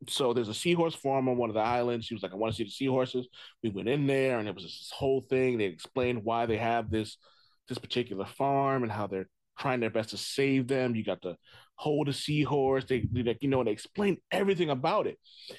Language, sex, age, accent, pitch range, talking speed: English, male, 30-49, American, 115-150 Hz, 245 wpm